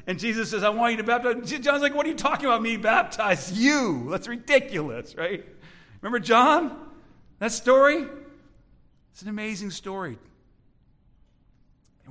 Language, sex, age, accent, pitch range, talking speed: English, male, 50-69, American, 215-285 Hz, 150 wpm